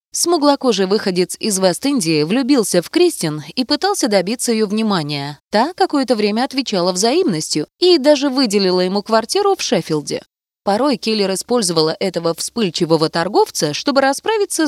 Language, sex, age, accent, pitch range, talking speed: Russian, female, 20-39, native, 190-280 Hz, 130 wpm